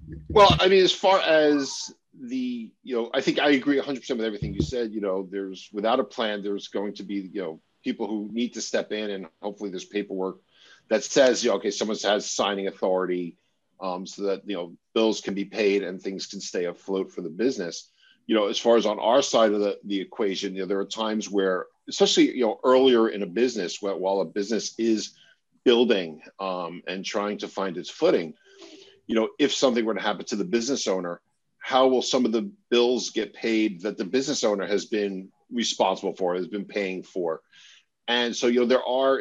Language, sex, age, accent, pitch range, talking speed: English, male, 50-69, American, 100-125 Hz, 215 wpm